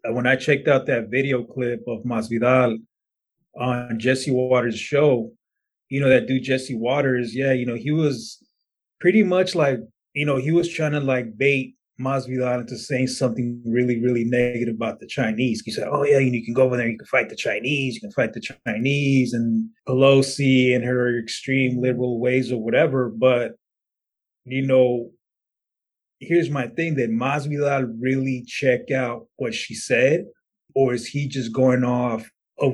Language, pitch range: English, 120-135 Hz